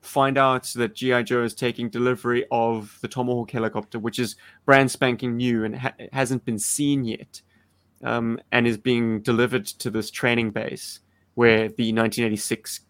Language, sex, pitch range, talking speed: English, male, 110-125 Hz, 165 wpm